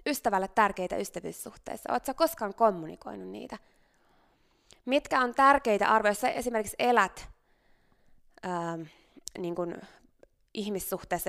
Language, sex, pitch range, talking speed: Finnish, female, 180-230 Hz, 90 wpm